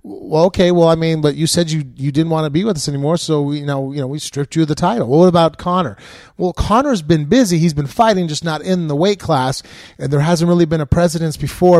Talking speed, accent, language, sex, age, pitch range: 270 wpm, American, English, male, 30-49, 135-165 Hz